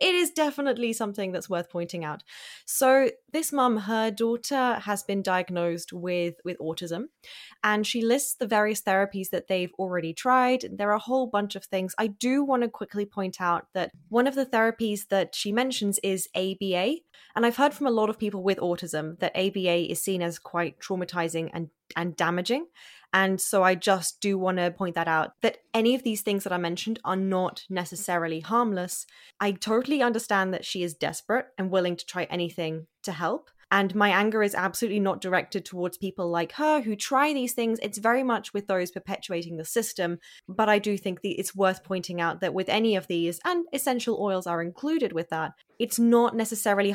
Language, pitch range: English, 180-230 Hz